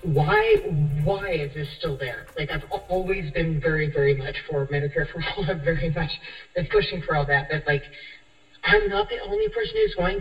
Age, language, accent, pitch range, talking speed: 40-59, English, American, 145-195 Hz, 200 wpm